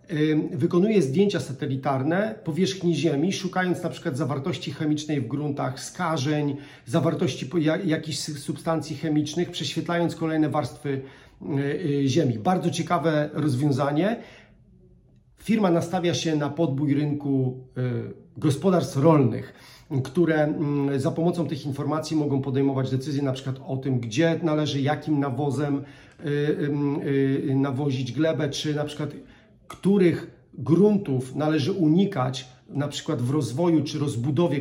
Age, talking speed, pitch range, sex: 40-59, 110 wpm, 135-165 Hz, male